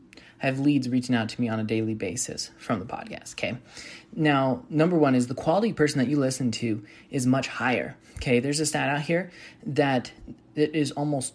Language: English